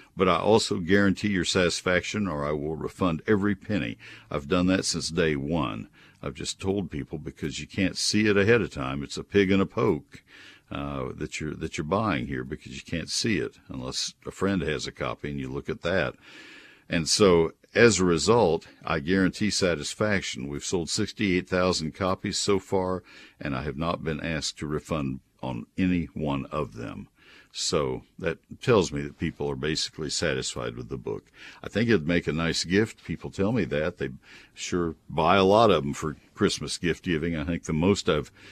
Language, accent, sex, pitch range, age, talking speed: English, American, male, 75-100 Hz, 60-79, 195 wpm